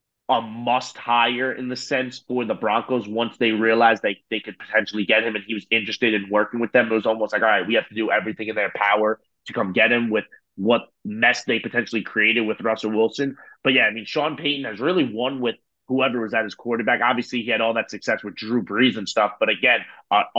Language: English